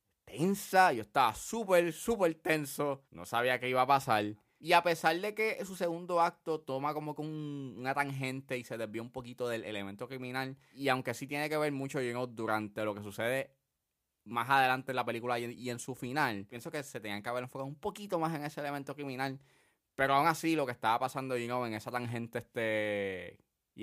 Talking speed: 200 wpm